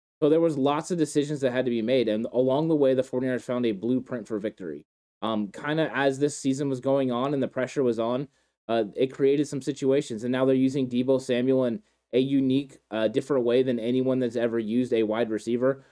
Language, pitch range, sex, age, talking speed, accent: English, 120-140 Hz, male, 20-39, 230 wpm, American